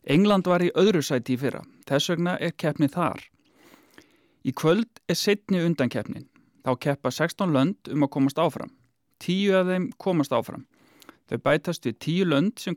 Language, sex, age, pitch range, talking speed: English, male, 30-49, 145-190 Hz, 165 wpm